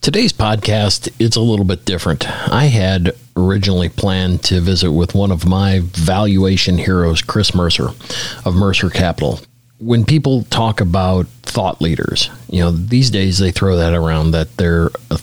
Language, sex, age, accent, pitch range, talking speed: English, male, 40-59, American, 90-115 Hz, 160 wpm